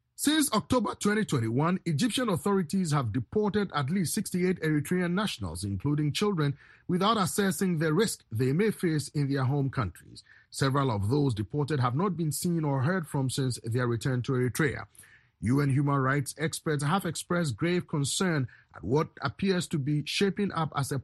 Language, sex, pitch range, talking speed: English, male, 135-180 Hz, 165 wpm